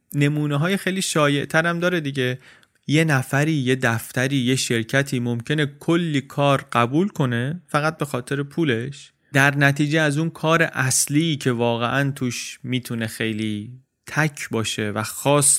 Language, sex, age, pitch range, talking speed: Persian, male, 30-49, 115-145 Hz, 140 wpm